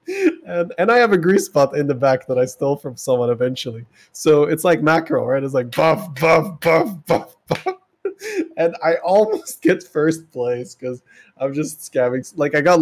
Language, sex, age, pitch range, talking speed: English, male, 20-39, 120-160 Hz, 190 wpm